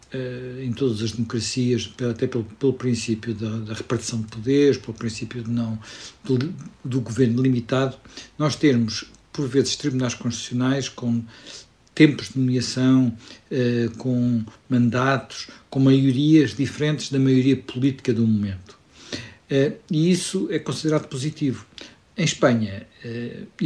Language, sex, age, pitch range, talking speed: Portuguese, male, 60-79, 120-140 Hz, 130 wpm